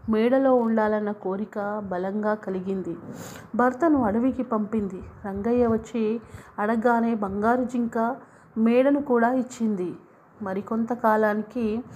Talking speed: 85 wpm